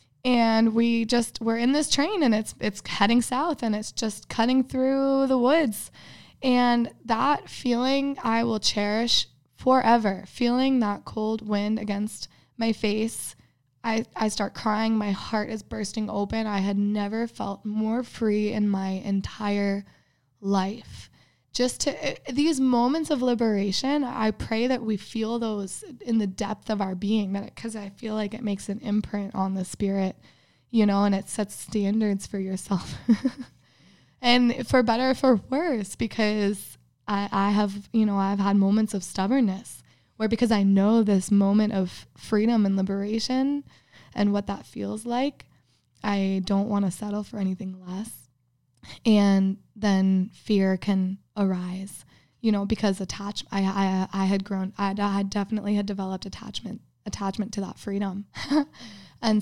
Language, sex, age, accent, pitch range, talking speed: English, female, 20-39, American, 195-225 Hz, 155 wpm